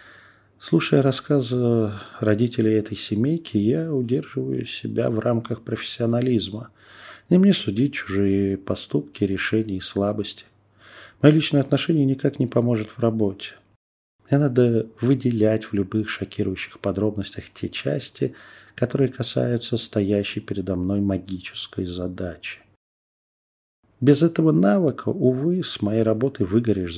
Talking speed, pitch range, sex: 115 wpm, 100-125 Hz, male